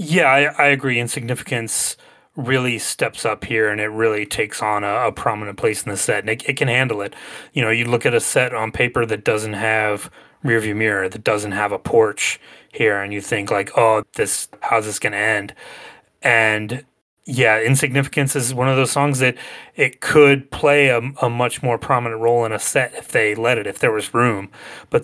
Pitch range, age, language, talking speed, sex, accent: 105-125 Hz, 30-49, English, 210 wpm, male, American